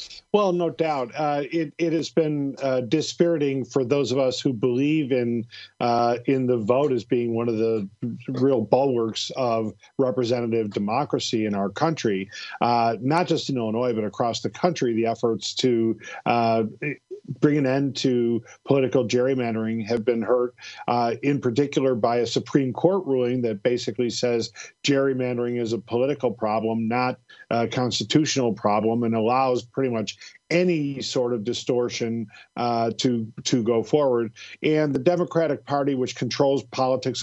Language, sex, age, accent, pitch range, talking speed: English, male, 50-69, American, 120-145 Hz, 155 wpm